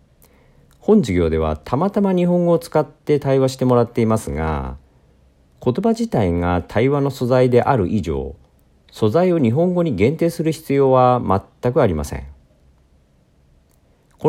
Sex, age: male, 50-69